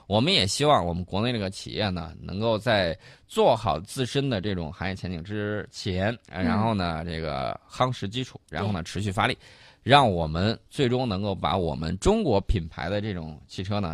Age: 20-39